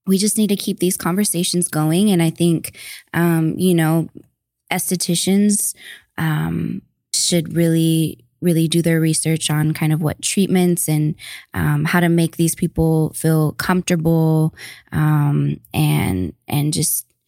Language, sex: English, female